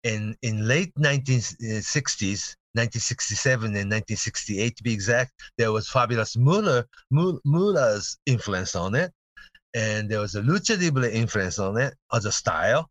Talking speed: 140 wpm